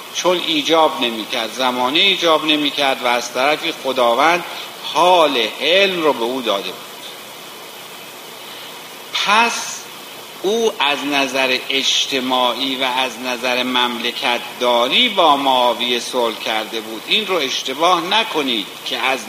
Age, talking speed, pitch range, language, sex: 50-69, 125 wpm, 125-150 Hz, Persian, male